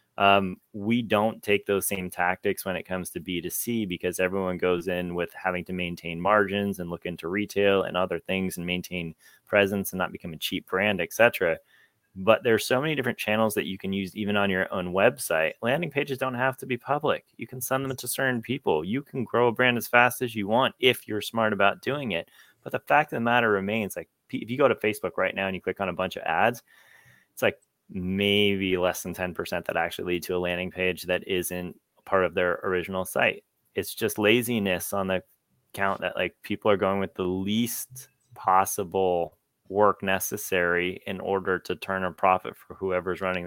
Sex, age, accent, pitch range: male, 30-49, American, 90-115 Hz